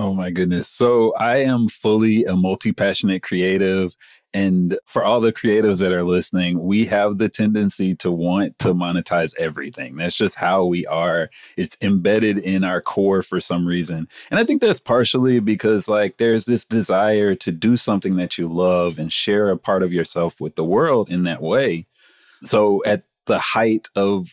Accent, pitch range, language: American, 90-110 Hz, English